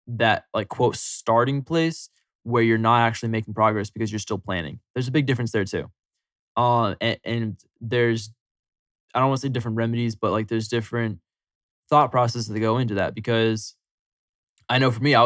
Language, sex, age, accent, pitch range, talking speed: English, male, 20-39, American, 105-120 Hz, 190 wpm